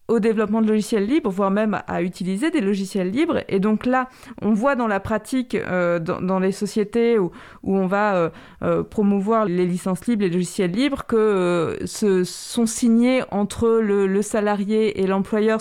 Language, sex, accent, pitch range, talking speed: French, female, French, 200-235 Hz, 190 wpm